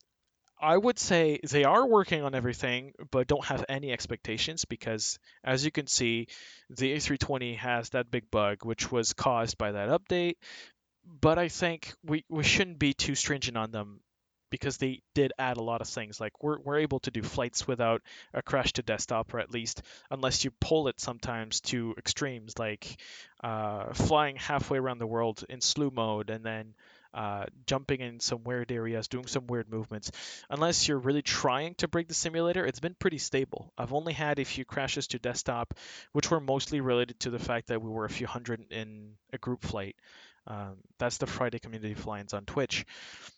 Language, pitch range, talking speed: English, 115-145 Hz, 190 wpm